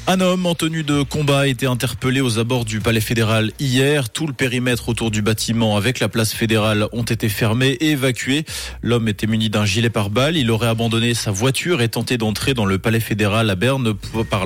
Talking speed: 210 wpm